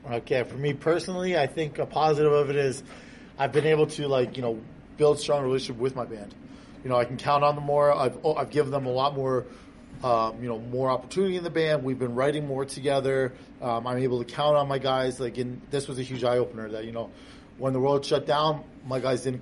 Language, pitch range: English, 125-150 Hz